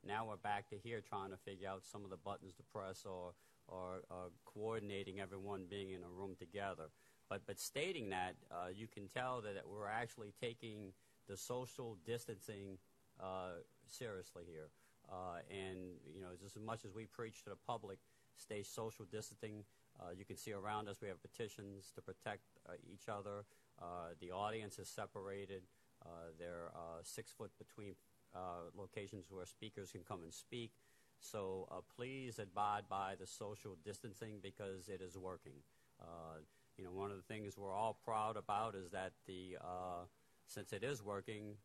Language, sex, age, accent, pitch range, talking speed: English, male, 50-69, American, 95-110 Hz, 175 wpm